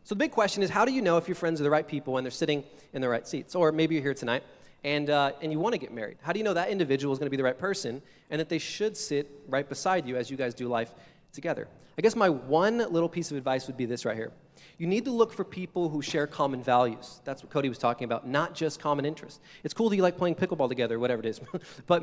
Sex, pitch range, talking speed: male, 135-180 Hz, 295 wpm